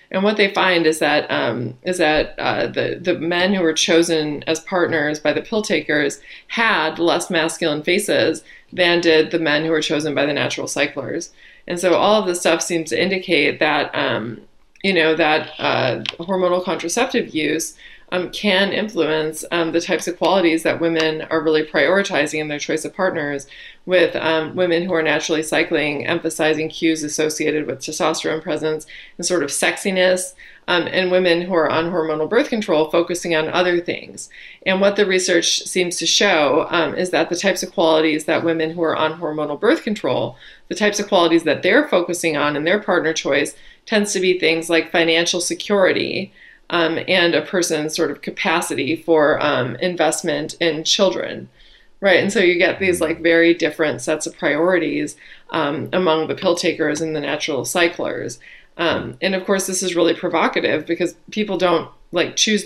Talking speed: 180 wpm